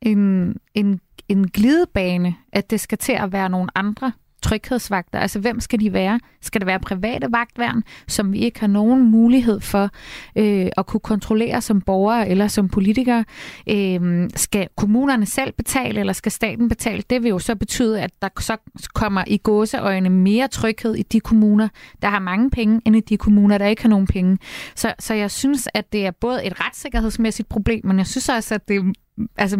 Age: 30-49